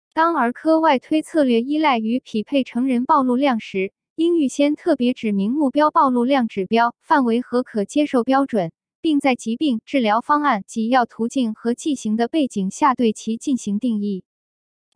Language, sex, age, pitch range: Chinese, female, 20-39, 225-295 Hz